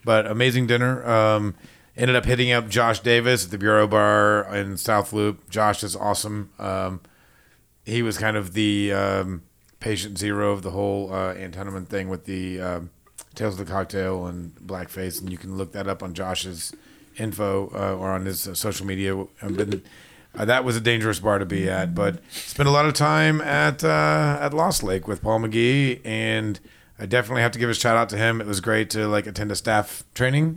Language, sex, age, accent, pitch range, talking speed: English, male, 40-59, American, 95-120 Hz, 200 wpm